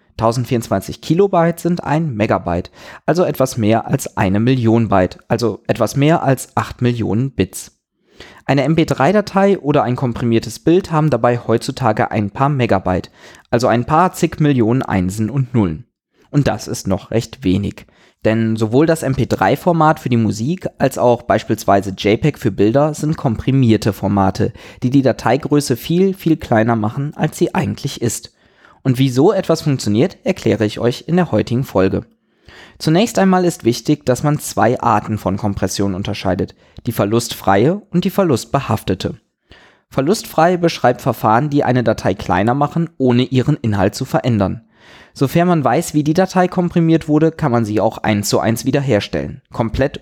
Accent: German